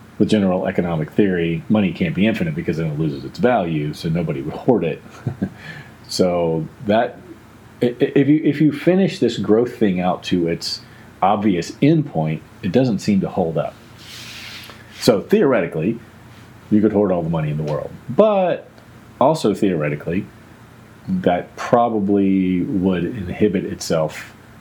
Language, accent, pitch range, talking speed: English, American, 85-115 Hz, 145 wpm